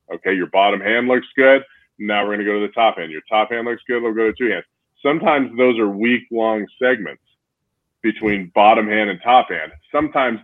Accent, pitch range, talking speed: American, 100-120 Hz, 215 wpm